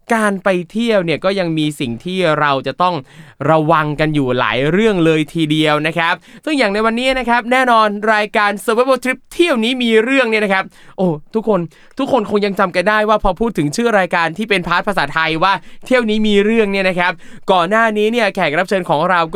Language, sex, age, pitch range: Thai, male, 20-39, 170-220 Hz